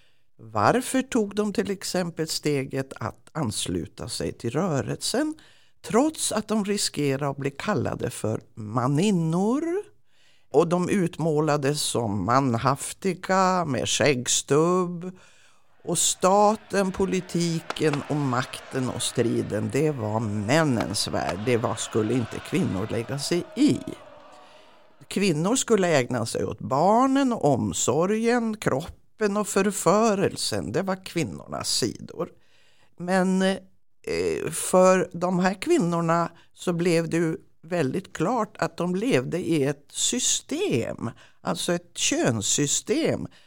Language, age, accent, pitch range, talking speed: Swedish, 50-69, native, 135-195 Hz, 110 wpm